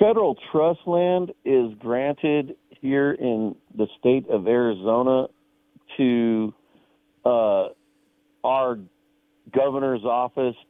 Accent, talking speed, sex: American, 90 wpm, male